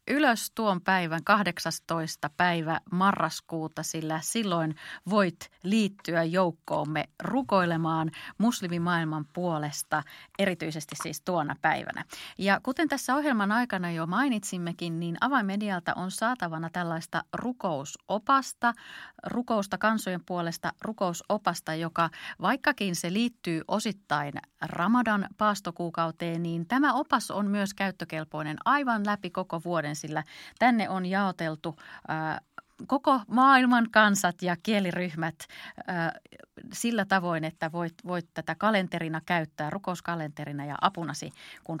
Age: 30-49